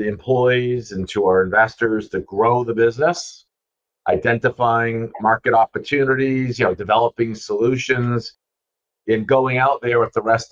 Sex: male